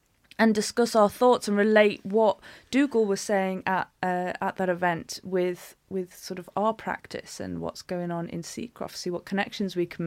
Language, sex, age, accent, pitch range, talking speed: English, female, 30-49, British, 170-210 Hz, 190 wpm